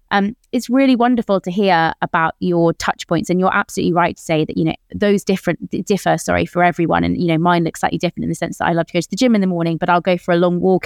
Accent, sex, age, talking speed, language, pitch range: British, female, 20-39, 295 wpm, English, 170-200 Hz